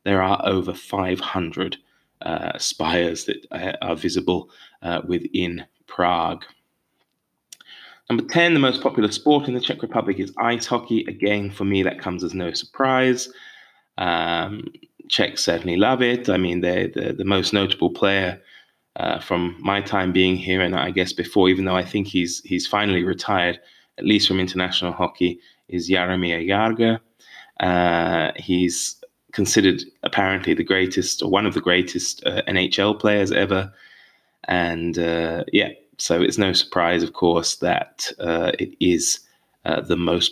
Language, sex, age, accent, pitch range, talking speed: English, male, 20-39, British, 90-115 Hz, 155 wpm